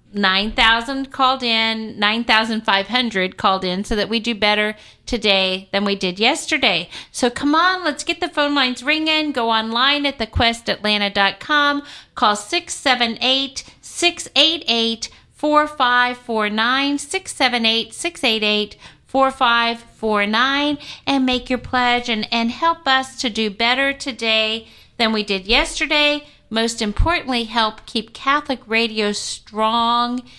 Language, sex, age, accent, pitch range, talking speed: English, female, 50-69, American, 220-270 Hz, 110 wpm